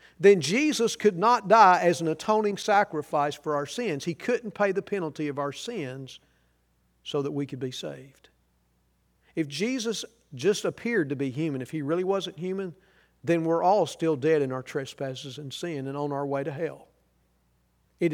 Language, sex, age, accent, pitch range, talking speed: English, male, 50-69, American, 140-215 Hz, 180 wpm